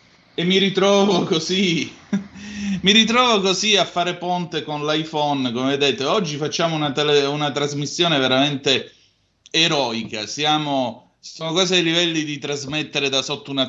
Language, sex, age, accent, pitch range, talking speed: Italian, male, 30-49, native, 130-165 Hz, 140 wpm